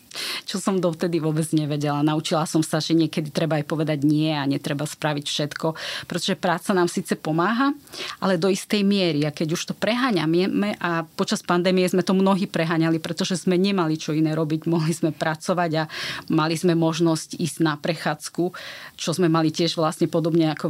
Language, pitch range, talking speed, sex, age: Slovak, 160-190 Hz, 180 wpm, female, 30-49